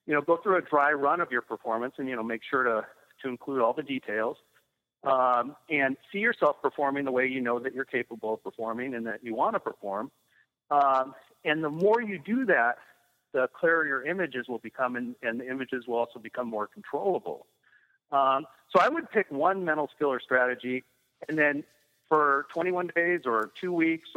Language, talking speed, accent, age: English, 200 wpm, American, 50-69